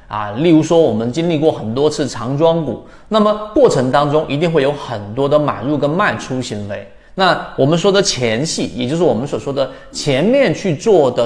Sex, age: male, 30-49